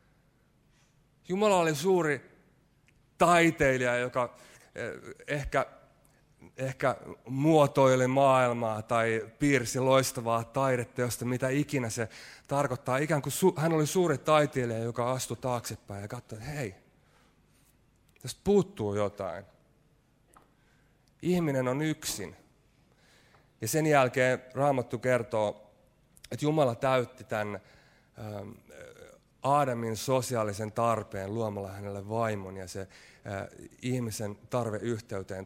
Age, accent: 30-49, native